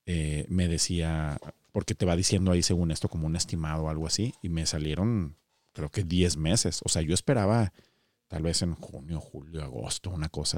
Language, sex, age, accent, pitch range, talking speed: Spanish, male, 40-59, Mexican, 80-105 Hz, 200 wpm